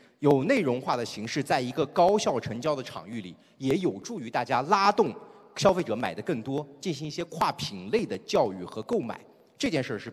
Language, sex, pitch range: Chinese, male, 130-205 Hz